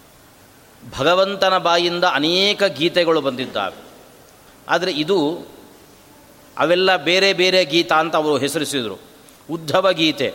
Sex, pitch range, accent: male, 155-200 Hz, native